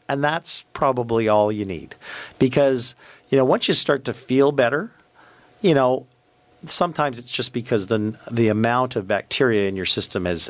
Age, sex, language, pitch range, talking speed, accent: 50-69, male, English, 100-130 Hz, 170 wpm, American